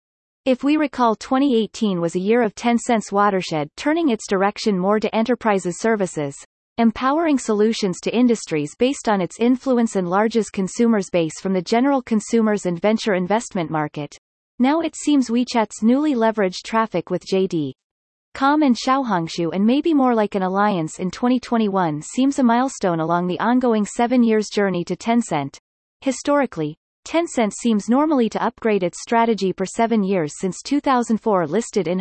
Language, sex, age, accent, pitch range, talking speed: English, female, 30-49, American, 180-245 Hz, 155 wpm